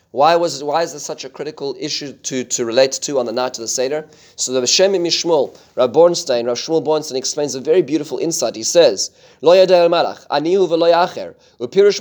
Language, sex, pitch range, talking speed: English, male, 140-185 Hz, 195 wpm